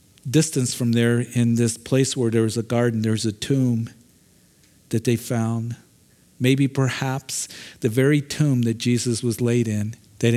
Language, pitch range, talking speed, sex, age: English, 115-135 Hz, 160 wpm, male, 50-69